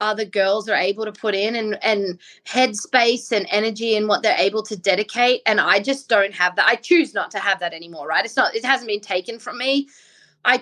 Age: 20-39